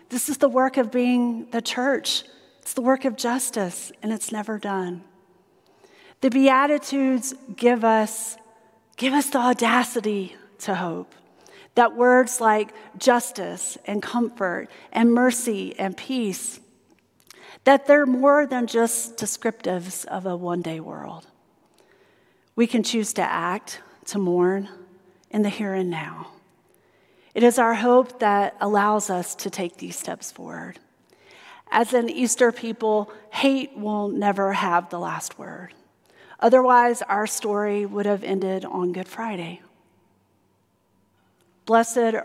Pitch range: 185-245 Hz